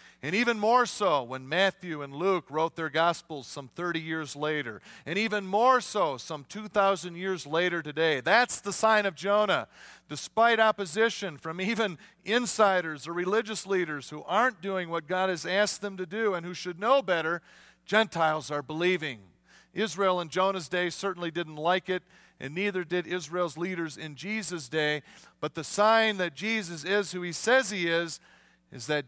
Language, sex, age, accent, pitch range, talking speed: English, male, 40-59, American, 110-190 Hz, 175 wpm